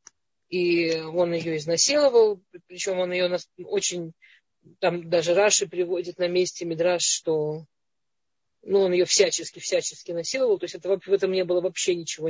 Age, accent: 20-39, native